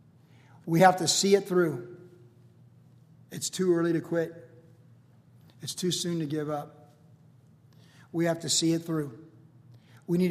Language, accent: English, American